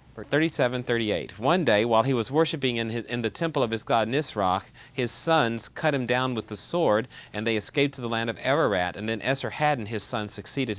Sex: male